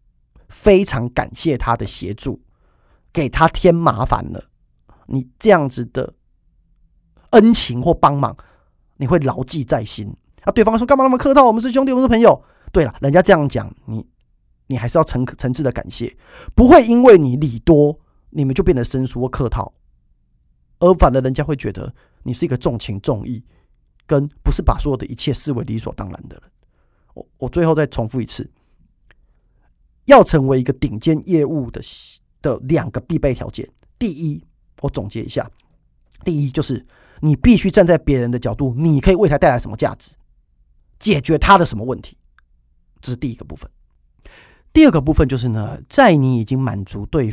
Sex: male